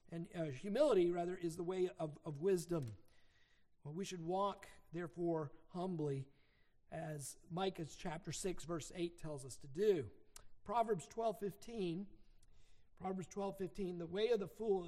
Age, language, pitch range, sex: 50-69, English, 155-190 Hz, male